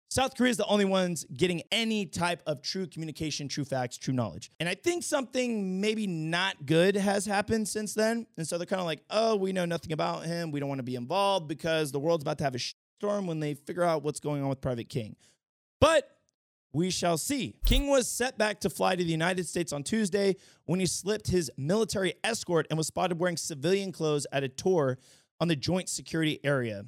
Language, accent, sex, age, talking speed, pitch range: English, American, male, 30-49, 225 wpm, 145-200 Hz